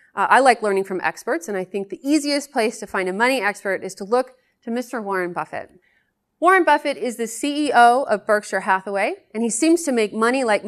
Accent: American